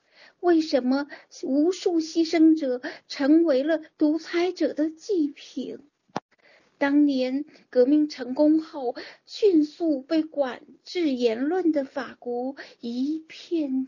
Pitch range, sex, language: 275-335 Hz, female, Chinese